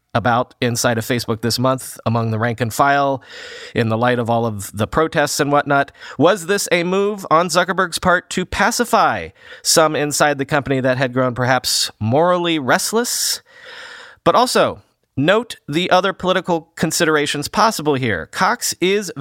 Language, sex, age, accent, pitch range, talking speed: English, male, 30-49, American, 130-180 Hz, 160 wpm